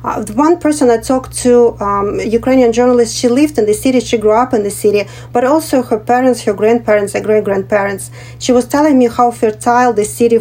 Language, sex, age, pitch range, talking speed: English, female, 40-59, 210-245 Hz, 215 wpm